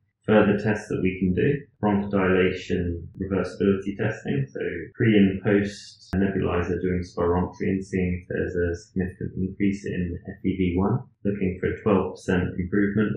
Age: 30-49